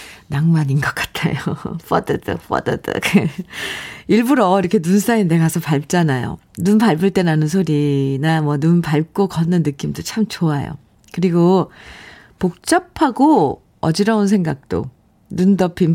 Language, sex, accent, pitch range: Korean, female, native, 160-210 Hz